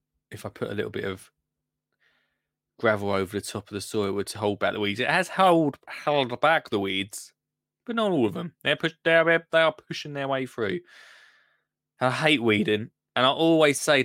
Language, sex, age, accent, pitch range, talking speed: English, male, 20-39, British, 115-155 Hz, 200 wpm